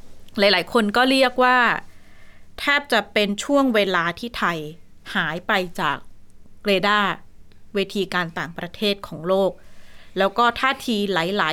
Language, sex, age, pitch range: Thai, female, 20-39, 180-220 Hz